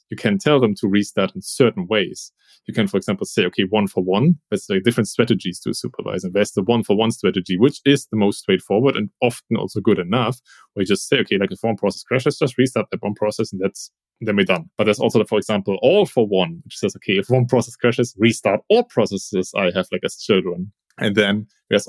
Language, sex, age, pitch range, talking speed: English, male, 30-49, 105-130 Hz, 245 wpm